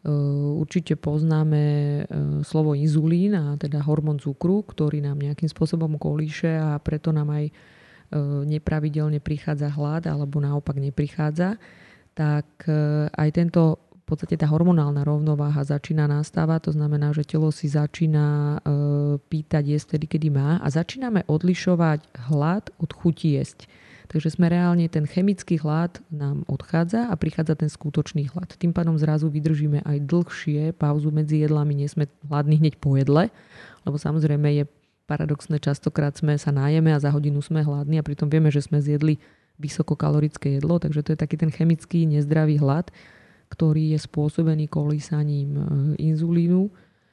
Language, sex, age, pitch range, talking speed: Slovak, female, 20-39, 145-160 Hz, 140 wpm